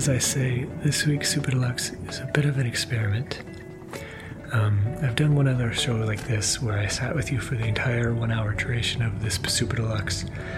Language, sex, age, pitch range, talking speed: English, male, 30-49, 105-125 Hz, 205 wpm